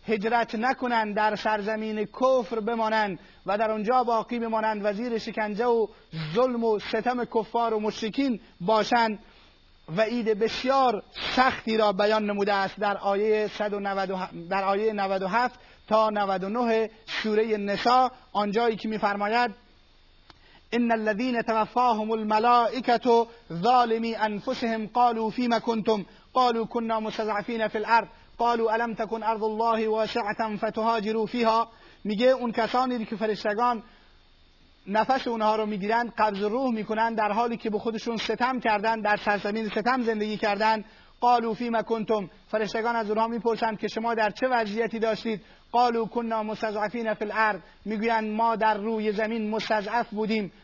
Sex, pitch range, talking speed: male, 215-235 Hz, 135 wpm